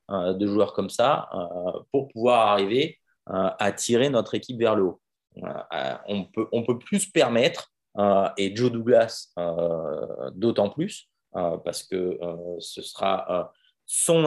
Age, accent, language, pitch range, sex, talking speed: 30-49, French, French, 95-110 Hz, male, 135 wpm